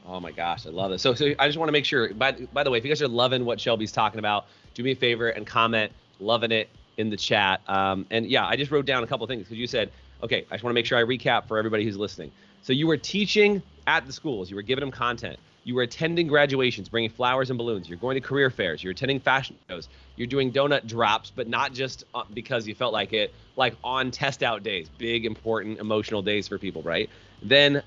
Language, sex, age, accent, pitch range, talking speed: English, male, 30-49, American, 110-140 Hz, 255 wpm